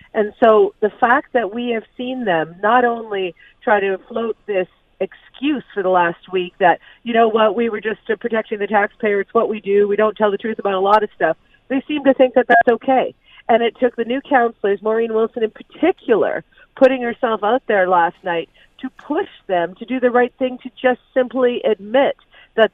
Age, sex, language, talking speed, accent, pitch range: 50-69, female, English, 210 wpm, American, 200-245 Hz